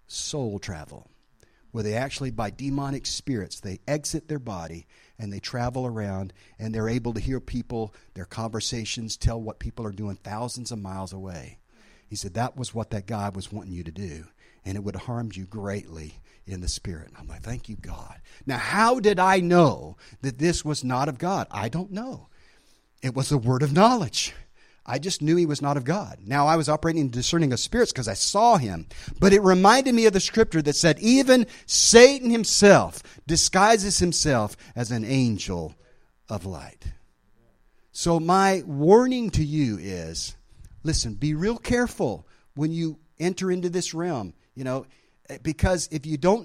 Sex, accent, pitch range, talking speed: male, American, 105-170 Hz, 180 wpm